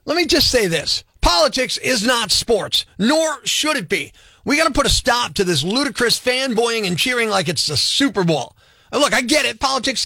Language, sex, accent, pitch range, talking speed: English, male, American, 205-275 Hz, 215 wpm